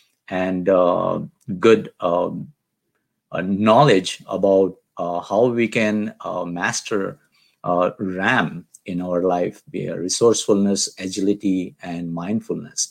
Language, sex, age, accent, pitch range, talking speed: Hindi, male, 50-69, native, 90-100 Hz, 110 wpm